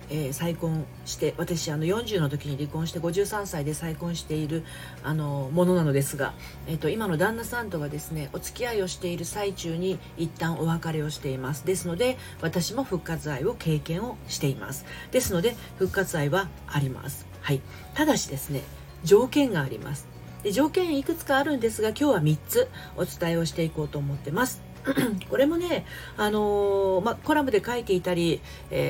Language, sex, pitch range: Japanese, female, 150-220 Hz